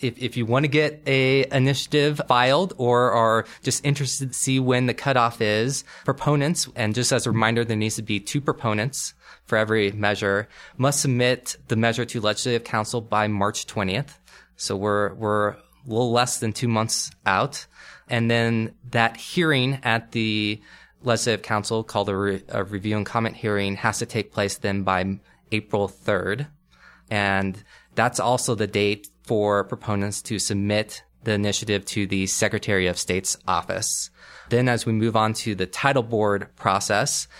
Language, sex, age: English, male, 20-39